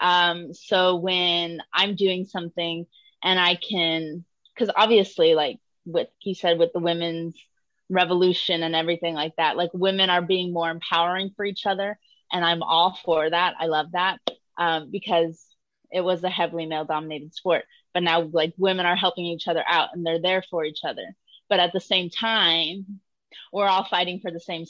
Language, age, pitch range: English, 20-39, 170-200 Hz